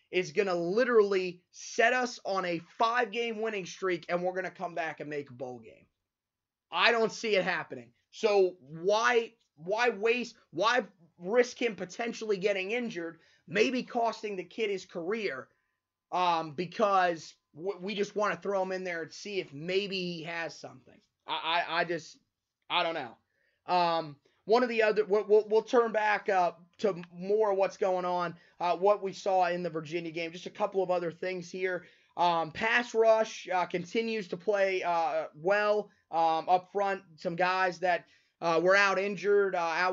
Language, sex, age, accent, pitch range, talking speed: English, male, 20-39, American, 170-205 Hz, 180 wpm